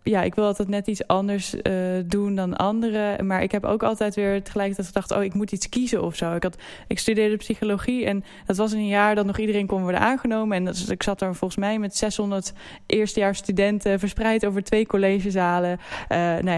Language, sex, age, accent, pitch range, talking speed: Dutch, female, 10-29, Dutch, 185-210 Hz, 205 wpm